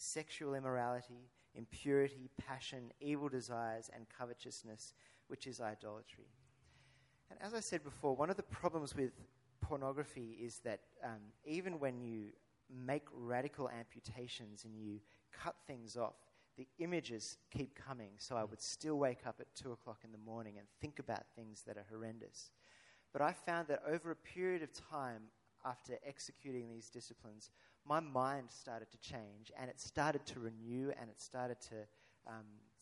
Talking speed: 160 wpm